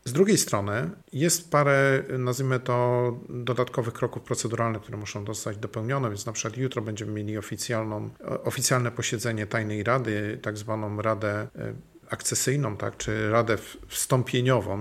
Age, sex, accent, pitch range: 40-59, male, native, 110-130 Hz